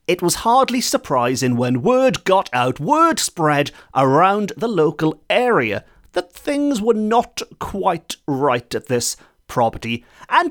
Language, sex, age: English, male, 30-49